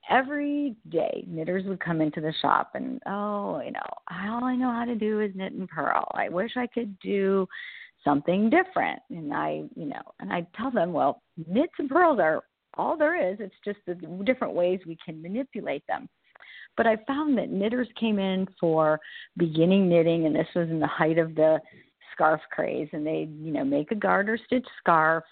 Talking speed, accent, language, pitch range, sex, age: 195 wpm, American, English, 165-235 Hz, female, 50-69